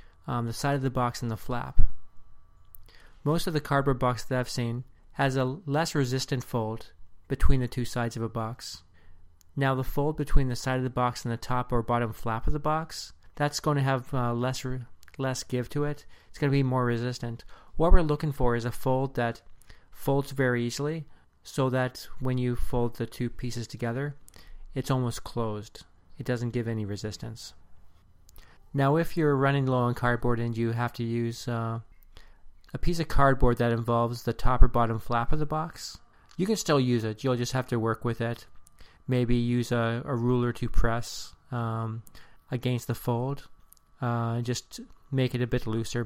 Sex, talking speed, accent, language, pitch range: male, 195 wpm, American, English, 115-130 Hz